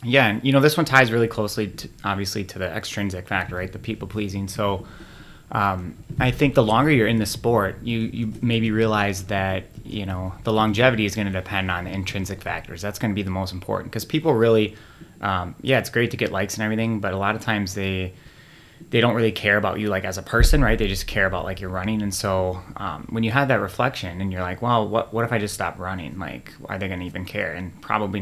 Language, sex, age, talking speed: English, male, 20-39, 245 wpm